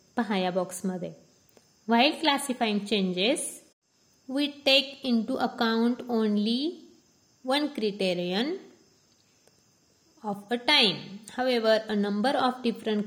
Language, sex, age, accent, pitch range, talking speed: Marathi, female, 20-39, native, 200-245 Hz, 85 wpm